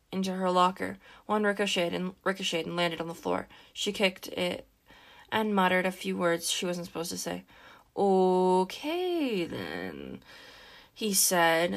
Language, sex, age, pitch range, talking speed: English, female, 20-39, 170-195 Hz, 145 wpm